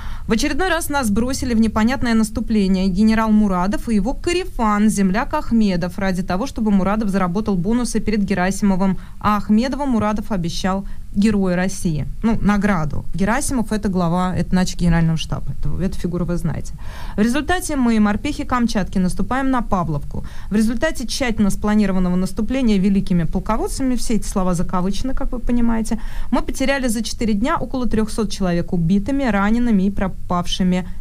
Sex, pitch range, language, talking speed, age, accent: female, 185-230 Hz, Russian, 150 wpm, 20-39, native